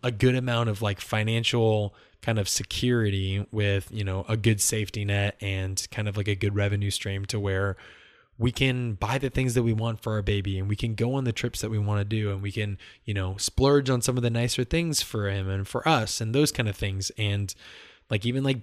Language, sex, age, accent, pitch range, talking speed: English, male, 20-39, American, 100-125 Hz, 240 wpm